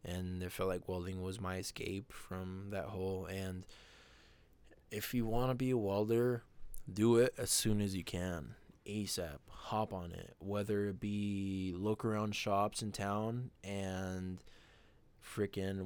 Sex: male